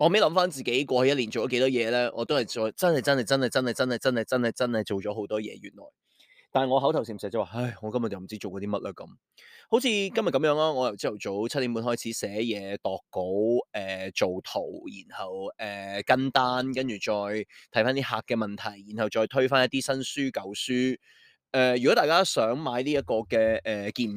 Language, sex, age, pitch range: Chinese, male, 20-39, 110-135 Hz